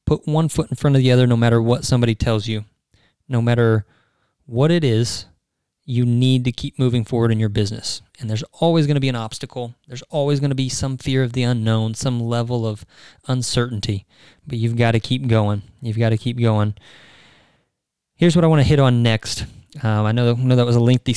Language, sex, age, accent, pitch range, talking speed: English, male, 20-39, American, 115-135 Hz, 220 wpm